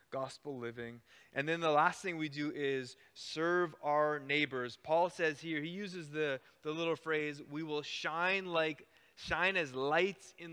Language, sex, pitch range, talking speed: English, male, 140-170 Hz, 170 wpm